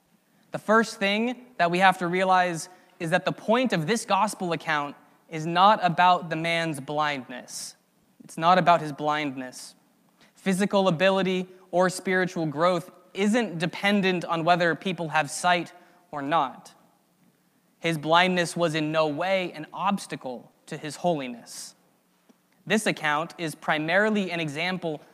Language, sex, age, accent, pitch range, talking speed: English, male, 20-39, American, 155-185 Hz, 140 wpm